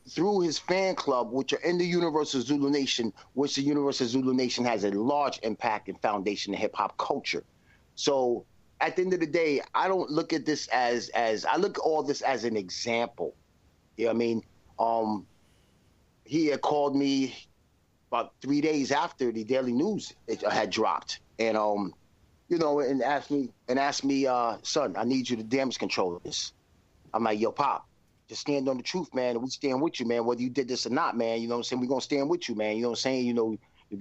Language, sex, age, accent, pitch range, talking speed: English, male, 30-49, American, 115-145 Hz, 230 wpm